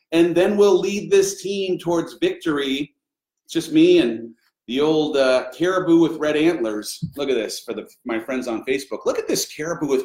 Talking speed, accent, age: 190 wpm, American, 40-59